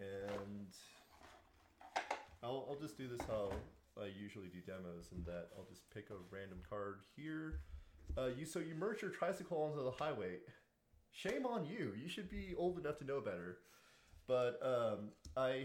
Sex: male